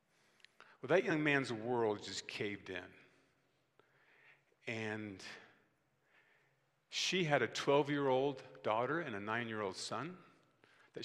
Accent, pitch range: American, 115-150 Hz